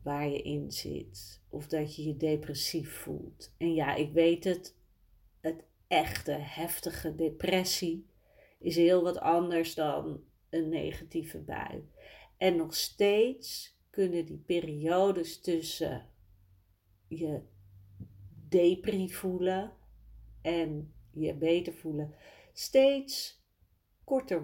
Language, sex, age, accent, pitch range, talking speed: Dutch, female, 40-59, Dutch, 150-210 Hz, 105 wpm